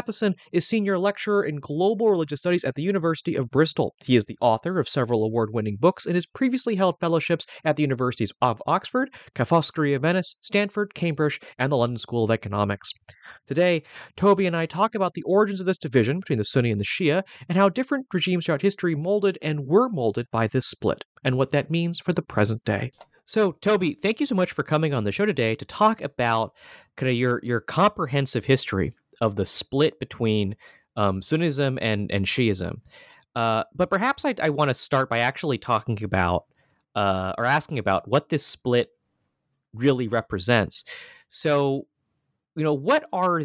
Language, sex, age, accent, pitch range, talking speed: English, male, 30-49, American, 120-180 Hz, 185 wpm